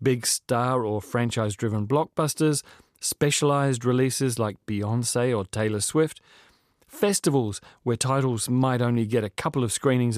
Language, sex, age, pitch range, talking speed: English, male, 30-49, 120-155 Hz, 130 wpm